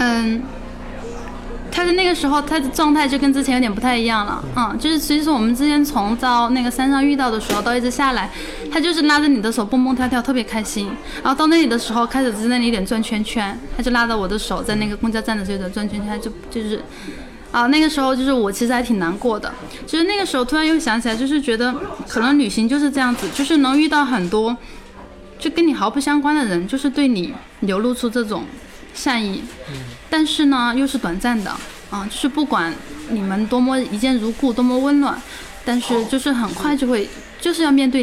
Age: 10-29